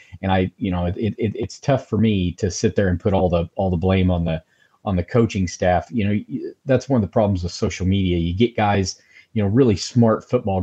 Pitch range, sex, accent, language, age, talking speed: 90-110 Hz, male, American, English, 40-59, 250 wpm